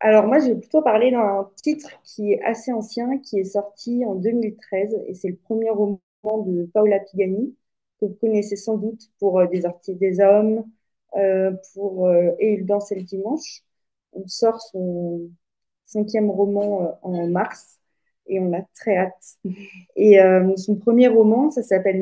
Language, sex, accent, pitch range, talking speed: French, female, French, 190-225 Hz, 185 wpm